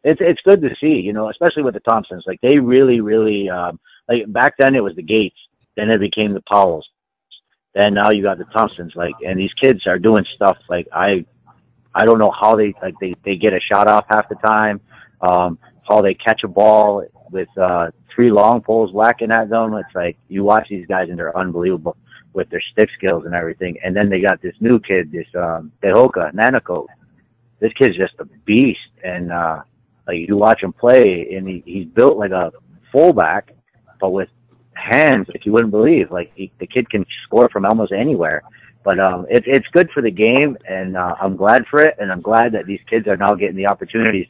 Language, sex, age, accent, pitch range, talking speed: English, male, 50-69, American, 95-120 Hz, 215 wpm